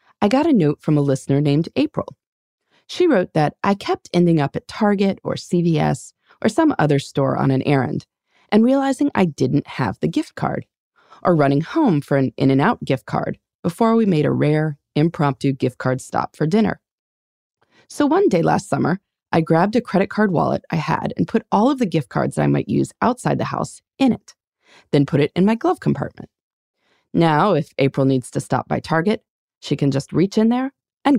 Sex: female